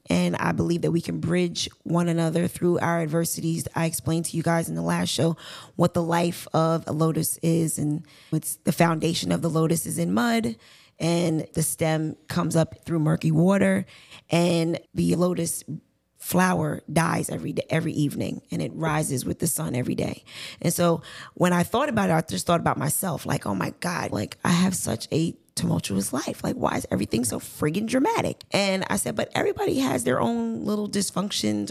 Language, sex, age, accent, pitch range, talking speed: English, female, 20-39, American, 150-175 Hz, 195 wpm